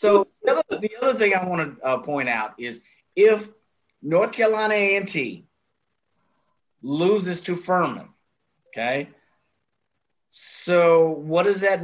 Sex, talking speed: male, 125 wpm